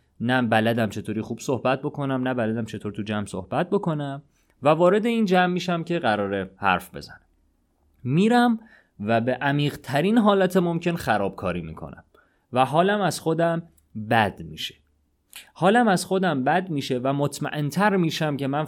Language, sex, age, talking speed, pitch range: Persian, male, 30-49, 150 wpm, 110-155 Hz